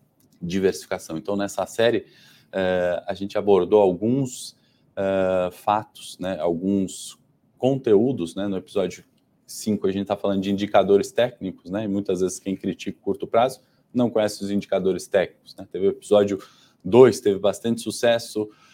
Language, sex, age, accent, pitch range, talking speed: Portuguese, male, 20-39, Brazilian, 95-115 Hz, 150 wpm